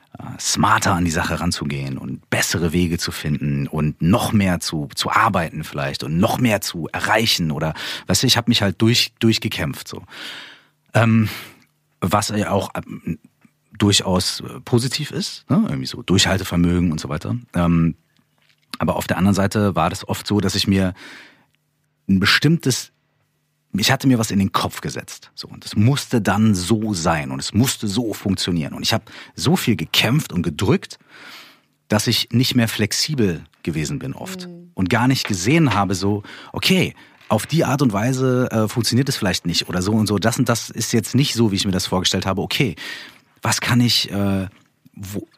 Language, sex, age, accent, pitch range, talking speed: German, male, 40-59, German, 90-120 Hz, 175 wpm